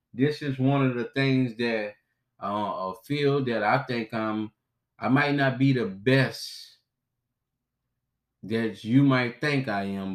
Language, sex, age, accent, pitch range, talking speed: English, male, 20-39, American, 110-130 Hz, 155 wpm